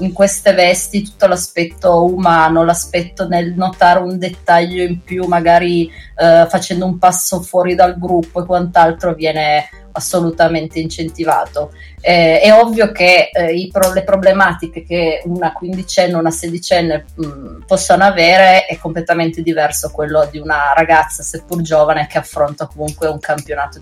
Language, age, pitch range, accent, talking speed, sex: Italian, 20-39, 160-180 Hz, native, 135 wpm, female